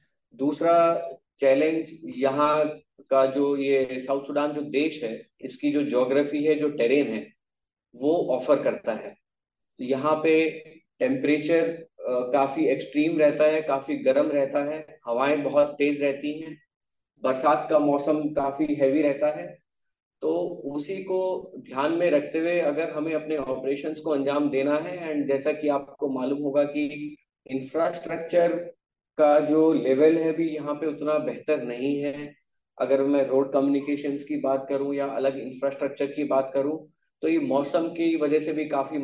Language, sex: Hindi, male